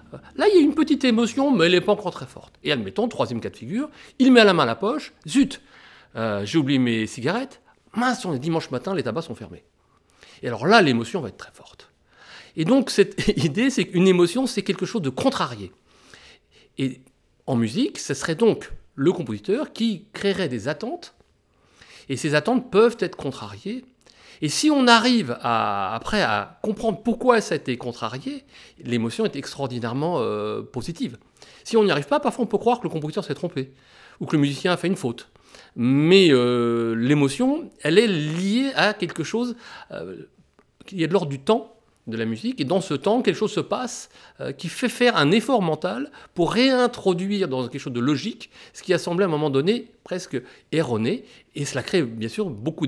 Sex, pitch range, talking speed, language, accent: male, 135-230 Hz, 200 wpm, French, French